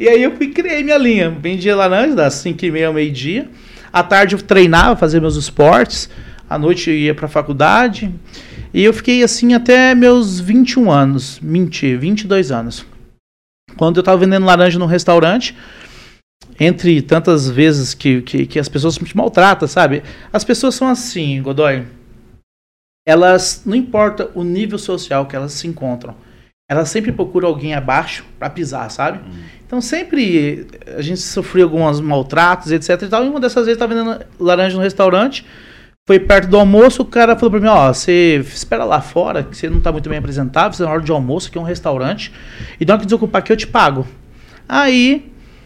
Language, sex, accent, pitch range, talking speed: Portuguese, male, Brazilian, 145-215 Hz, 185 wpm